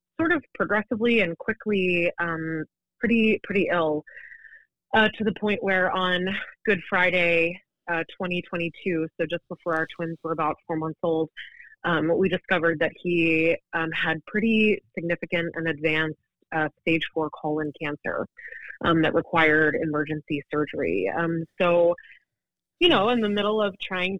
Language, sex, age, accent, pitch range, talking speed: English, female, 30-49, American, 165-195 Hz, 145 wpm